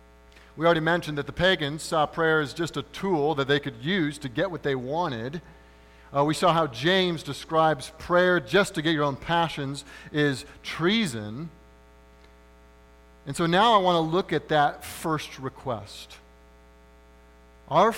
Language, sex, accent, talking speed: English, male, American, 160 wpm